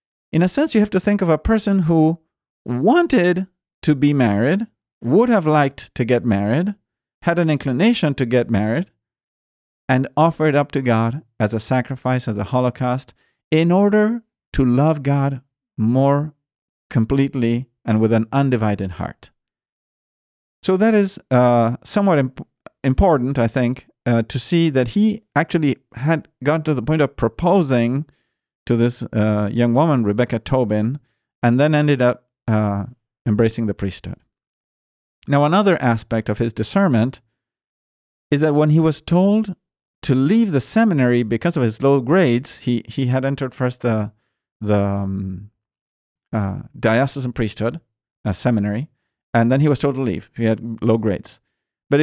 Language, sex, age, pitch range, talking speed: English, male, 50-69, 115-155 Hz, 150 wpm